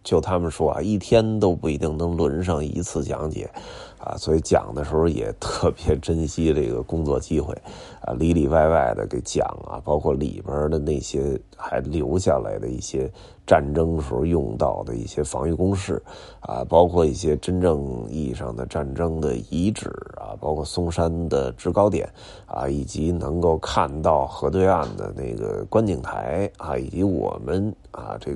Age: 30-49